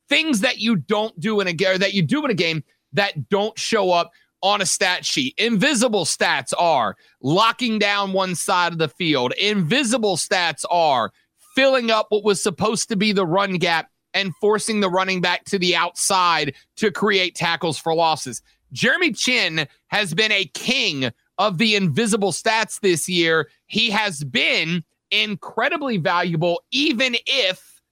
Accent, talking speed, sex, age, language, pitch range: American, 165 wpm, male, 30-49, English, 180-225 Hz